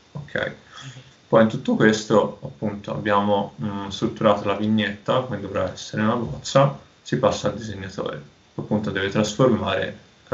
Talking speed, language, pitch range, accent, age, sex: 145 wpm, Italian, 100-110 Hz, native, 20-39, male